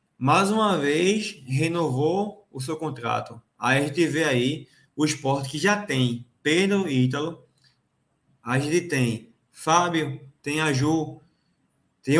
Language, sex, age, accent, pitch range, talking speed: Portuguese, male, 20-39, Brazilian, 130-175 Hz, 140 wpm